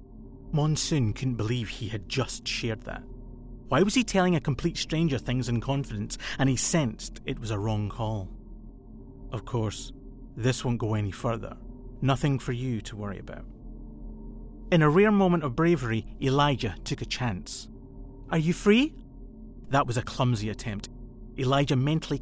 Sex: male